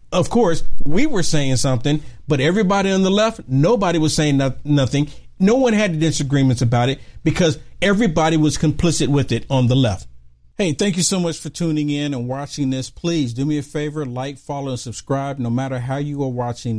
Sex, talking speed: male, 200 wpm